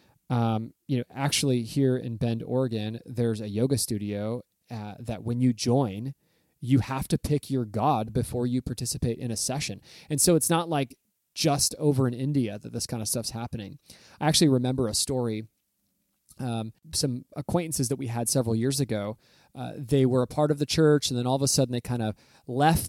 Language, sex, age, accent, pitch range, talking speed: English, male, 20-39, American, 120-140 Hz, 200 wpm